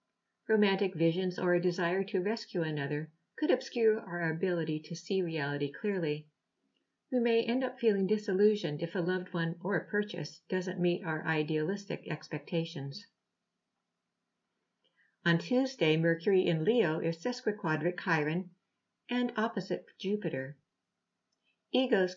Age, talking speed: 60-79, 125 wpm